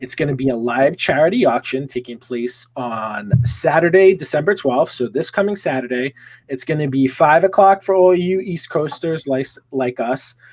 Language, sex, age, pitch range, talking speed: English, male, 30-49, 125-150 Hz, 180 wpm